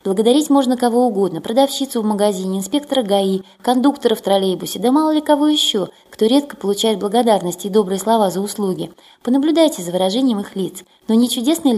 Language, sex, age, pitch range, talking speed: Russian, female, 20-39, 190-255 Hz, 175 wpm